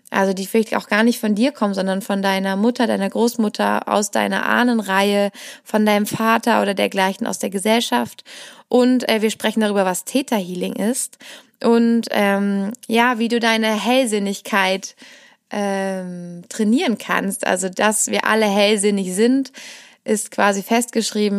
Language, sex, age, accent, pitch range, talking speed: German, female, 20-39, German, 195-235 Hz, 150 wpm